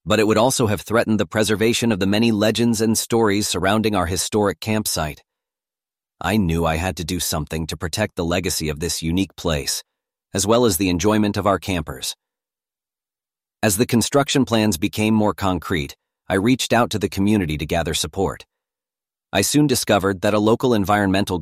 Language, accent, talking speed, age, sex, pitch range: English, American, 180 wpm, 40-59, male, 90-110 Hz